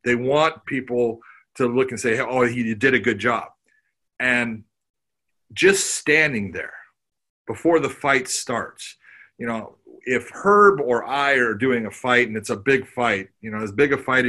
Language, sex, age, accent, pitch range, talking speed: English, male, 40-59, American, 115-145 Hz, 175 wpm